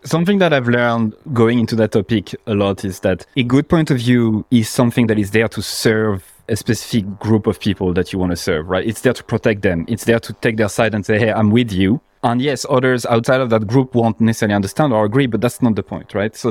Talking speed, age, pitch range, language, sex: 260 wpm, 30-49, 105-125 Hz, English, male